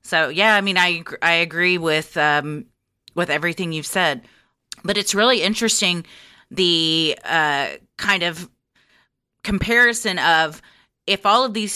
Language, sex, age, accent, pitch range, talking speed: English, female, 30-49, American, 170-230 Hz, 140 wpm